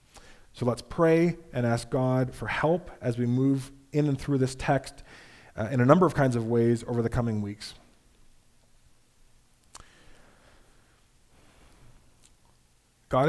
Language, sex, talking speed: English, male, 130 wpm